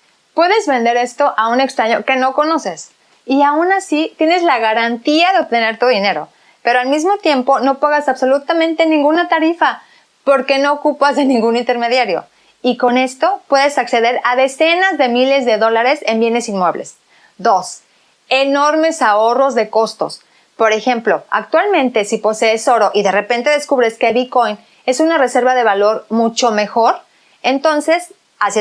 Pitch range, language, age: 230-290 Hz, Spanish, 30-49